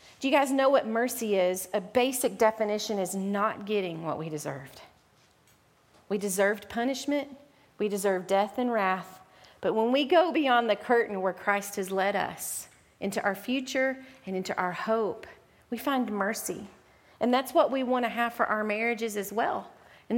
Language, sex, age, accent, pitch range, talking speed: English, female, 40-59, American, 200-245 Hz, 175 wpm